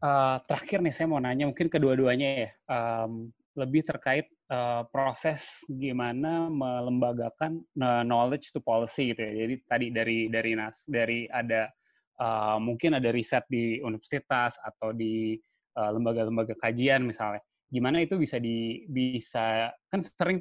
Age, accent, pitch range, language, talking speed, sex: 20-39, native, 115-135 Hz, Indonesian, 140 wpm, male